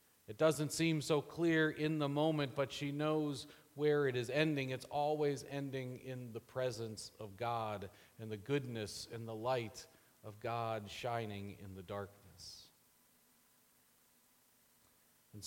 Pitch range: 115-145 Hz